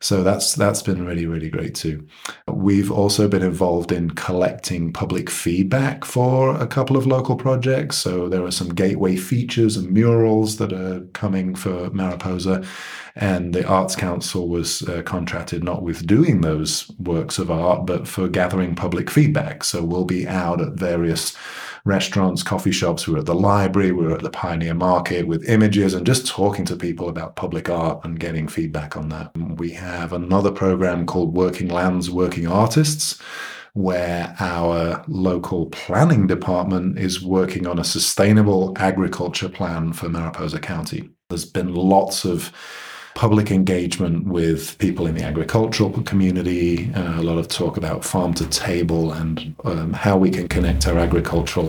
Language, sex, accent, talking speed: English, male, British, 165 wpm